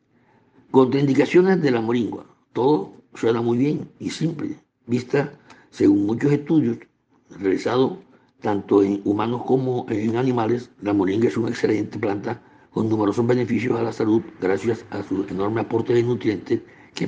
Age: 60-79